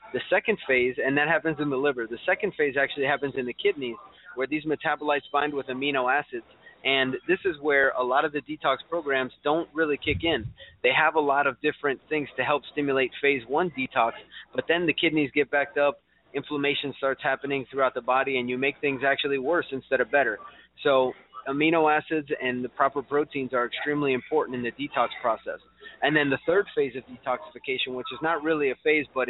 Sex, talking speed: male, 205 wpm